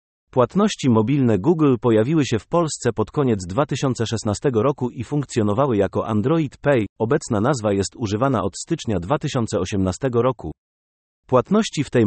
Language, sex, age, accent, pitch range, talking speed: Polish, male, 30-49, native, 110-140 Hz, 135 wpm